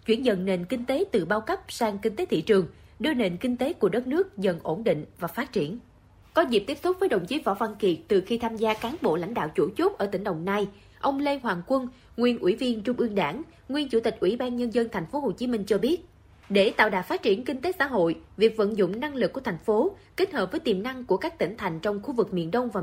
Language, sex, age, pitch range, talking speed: Vietnamese, female, 20-39, 195-260 Hz, 280 wpm